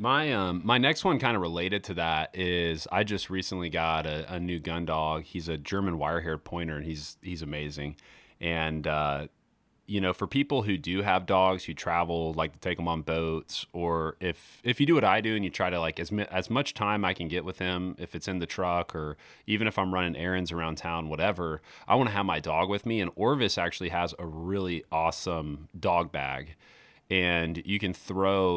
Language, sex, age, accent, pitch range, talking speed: English, male, 30-49, American, 80-95 Hz, 220 wpm